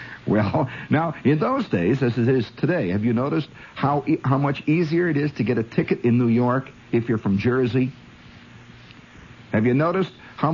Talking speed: 190 wpm